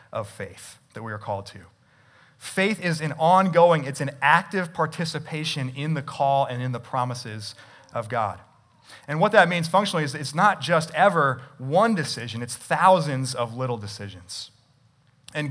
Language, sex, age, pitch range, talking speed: English, male, 30-49, 120-155 Hz, 165 wpm